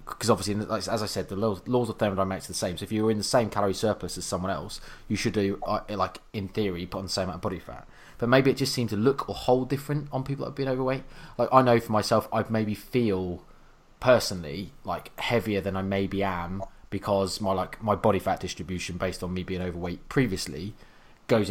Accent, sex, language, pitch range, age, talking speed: British, male, English, 95-110 Hz, 20-39, 235 wpm